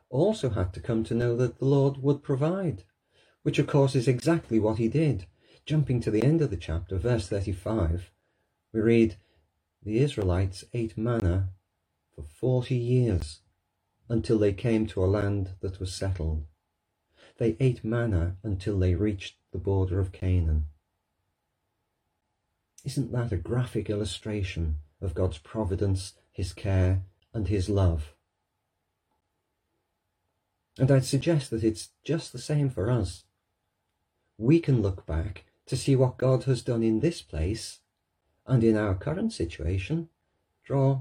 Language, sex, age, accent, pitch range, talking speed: English, male, 40-59, British, 90-120 Hz, 145 wpm